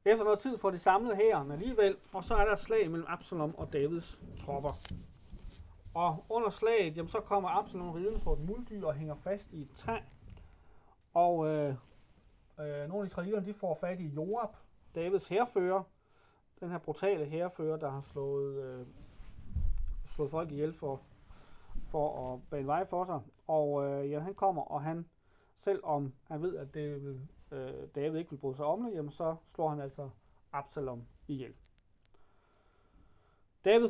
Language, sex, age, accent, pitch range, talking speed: Danish, male, 30-49, native, 130-180 Hz, 165 wpm